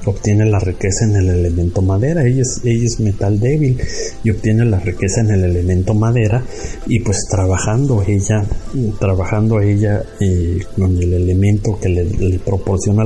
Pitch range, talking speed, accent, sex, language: 95-110 Hz, 160 wpm, Mexican, male, Spanish